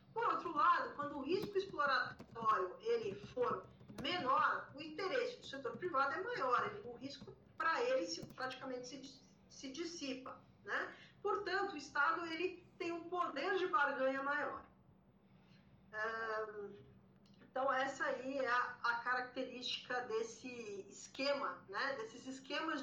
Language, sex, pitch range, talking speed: Portuguese, female, 255-340 Hz, 120 wpm